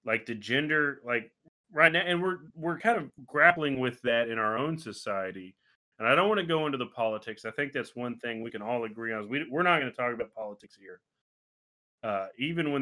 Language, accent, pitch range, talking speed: English, American, 105-150 Hz, 235 wpm